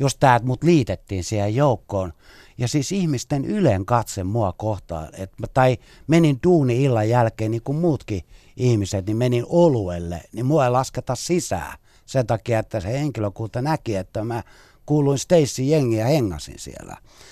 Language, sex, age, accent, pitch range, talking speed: Finnish, male, 60-79, native, 95-135 Hz, 155 wpm